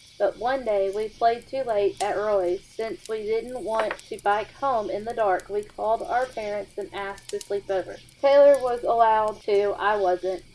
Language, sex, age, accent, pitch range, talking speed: English, female, 30-49, American, 200-240 Hz, 195 wpm